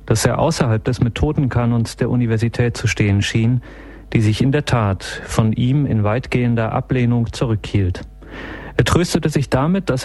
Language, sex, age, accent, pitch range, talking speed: German, male, 40-59, German, 110-135 Hz, 155 wpm